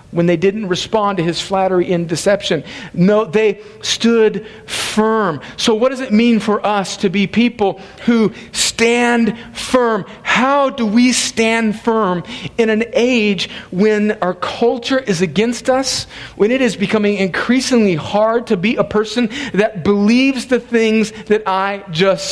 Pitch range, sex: 200-245 Hz, male